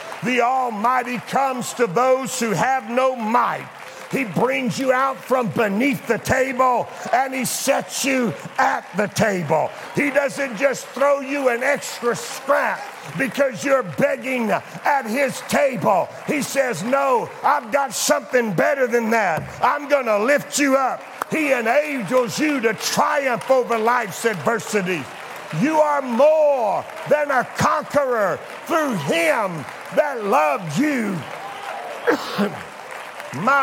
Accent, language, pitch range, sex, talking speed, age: American, English, 165-265 Hz, male, 130 wpm, 50-69